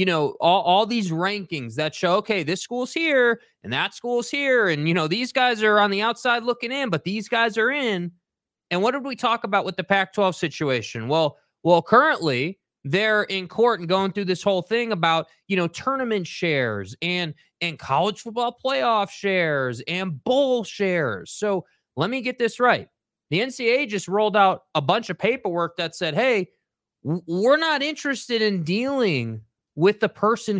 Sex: male